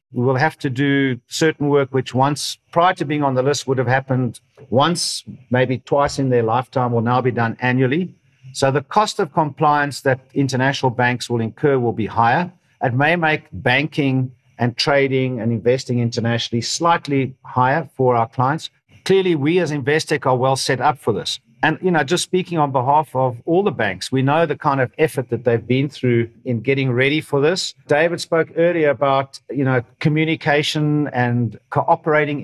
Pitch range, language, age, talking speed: 125-150 Hz, English, 50-69, 185 wpm